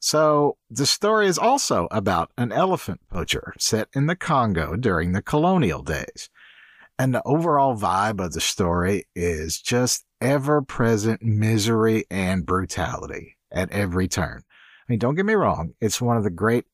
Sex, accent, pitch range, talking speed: male, American, 95-130 Hz, 160 wpm